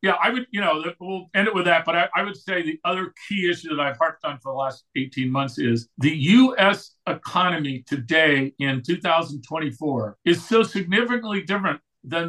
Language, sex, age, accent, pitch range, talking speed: English, male, 50-69, American, 155-200 Hz, 195 wpm